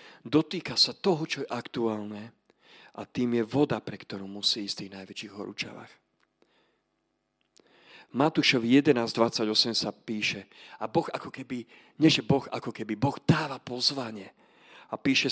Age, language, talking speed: 40-59, Slovak, 135 wpm